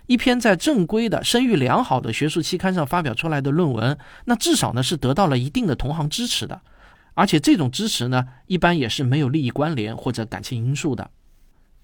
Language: Chinese